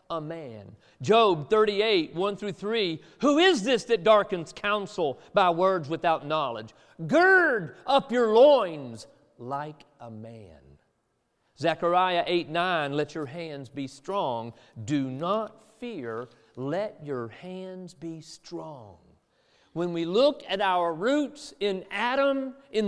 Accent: American